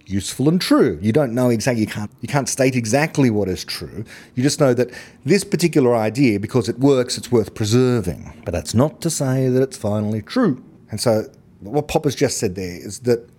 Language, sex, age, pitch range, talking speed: English, male, 30-49, 105-145 Hz, 215 wpm